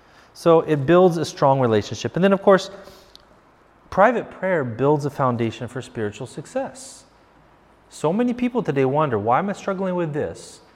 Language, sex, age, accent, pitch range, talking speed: English, male, 30-49, American, 120-195 Hz, 160 wpm